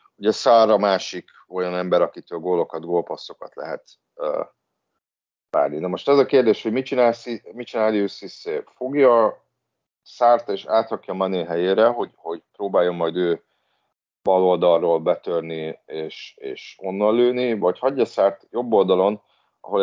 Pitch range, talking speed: 90-105 Hz, 135 wpm